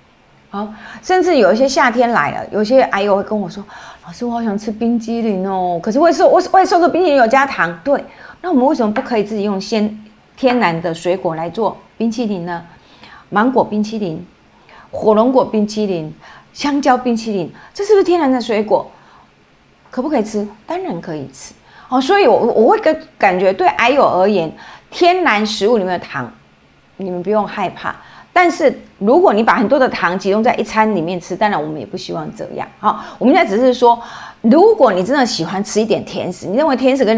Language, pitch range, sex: Chinese, 190-260 Hz, female